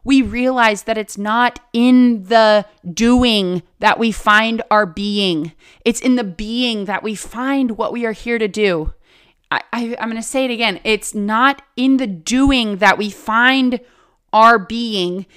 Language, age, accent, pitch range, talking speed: English, 30-49, American, 200-250 Hz, 165 wpm